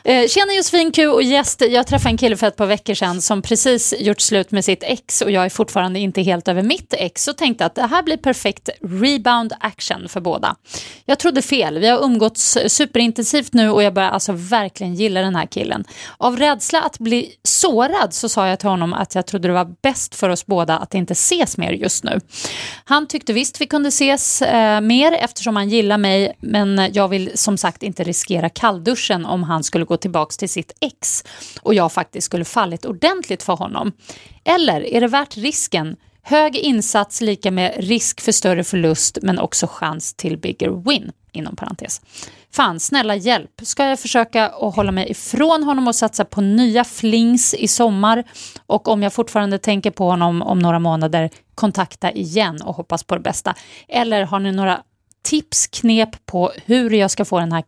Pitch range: 185-245 Hz